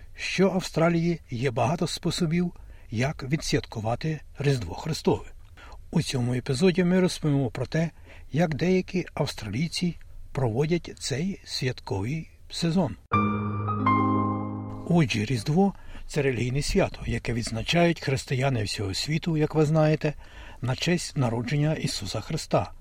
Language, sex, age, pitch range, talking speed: Ukrainian, male, 60-79, 110-170 Hz, 115 wpm